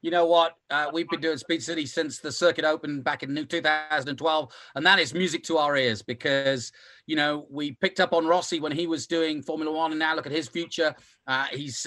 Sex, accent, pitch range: male, British, 145-195 Hz